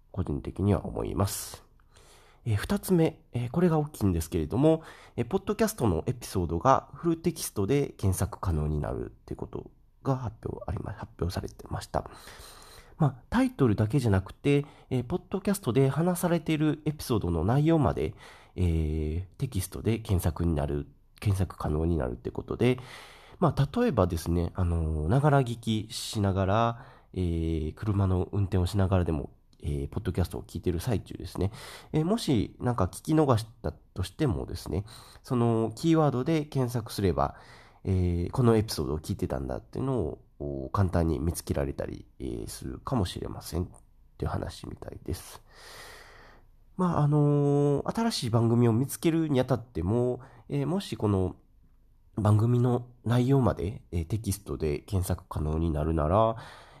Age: 40-59